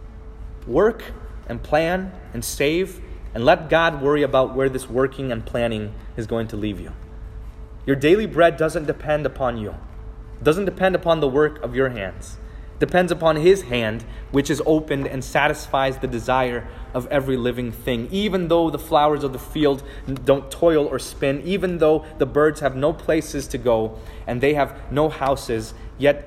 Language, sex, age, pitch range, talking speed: English, male, 20-39, 110-150 Hz, 180 wpm